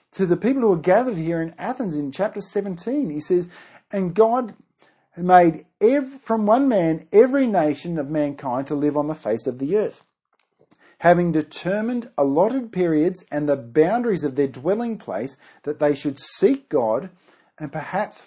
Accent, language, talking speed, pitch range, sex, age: Australian, English, 165 wpm, 150-215 Hz, male, 40-59